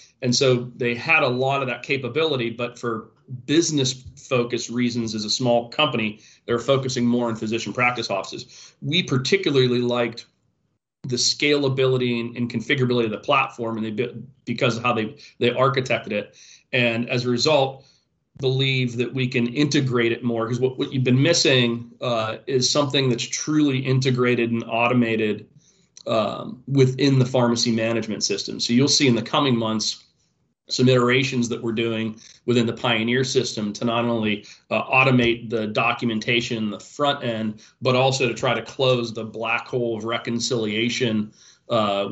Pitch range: 115-130 Hz